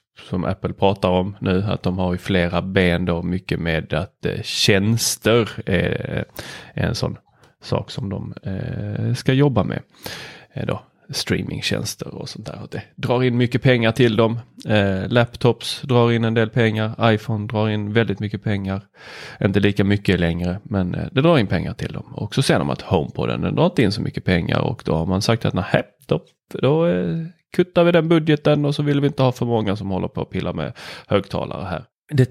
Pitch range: 100-135 Hz